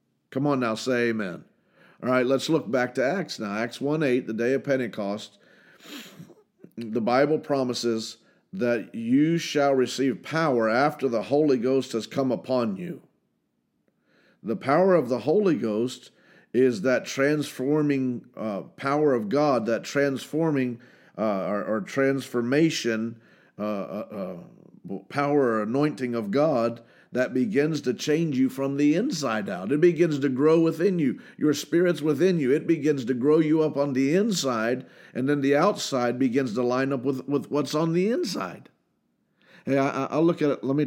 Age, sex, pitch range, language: 50-69, male, 115-145 Hz, English